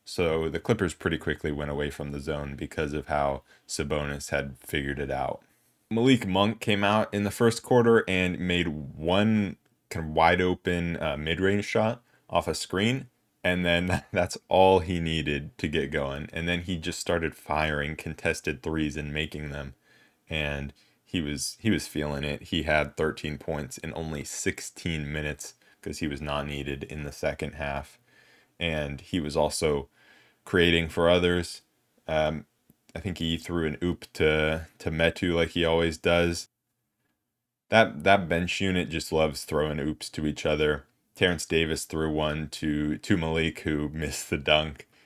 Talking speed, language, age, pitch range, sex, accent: 170 wpm, English, 20-39, 75-95 Hz, male, American